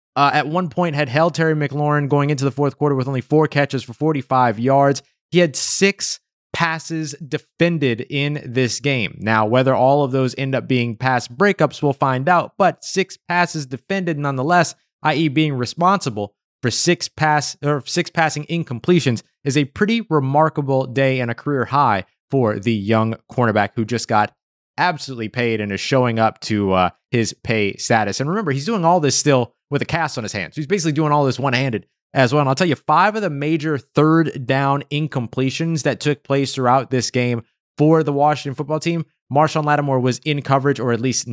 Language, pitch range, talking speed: English, 115-150 Hz, 195 wpm